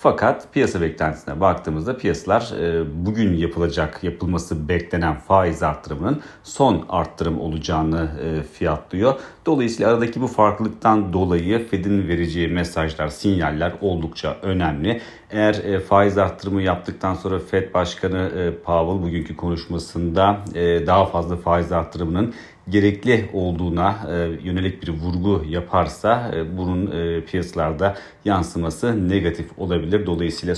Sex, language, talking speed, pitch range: male, Turkish, 100 wpm, 85-100 Hz